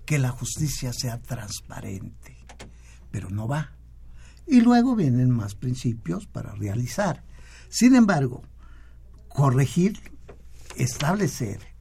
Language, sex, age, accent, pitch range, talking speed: Spanish, male, 60-79, Mexican, 100-135 Hz, 95 wpm